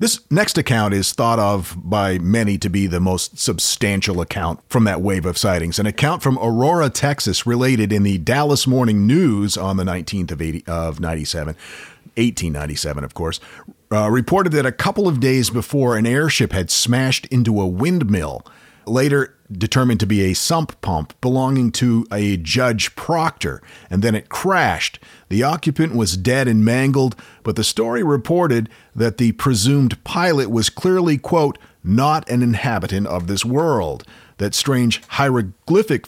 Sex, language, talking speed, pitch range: male, English, 160 wpm, 100-130 Hz